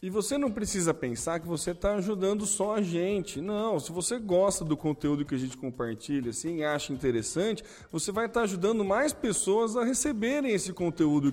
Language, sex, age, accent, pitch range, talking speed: Portuguese, male, 20-39, Brazilian, 160-215 Hz, 185 wpm